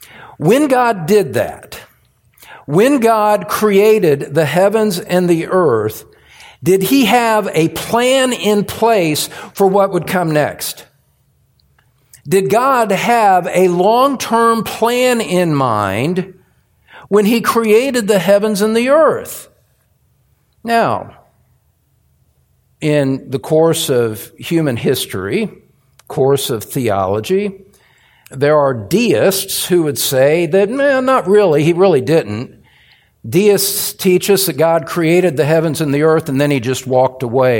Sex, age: male, 50-69